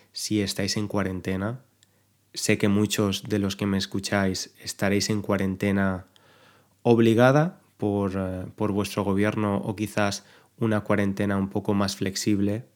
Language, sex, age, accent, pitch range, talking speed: Spanish, male, 20-39, Spanish, 100-115 Hz, 130 wpm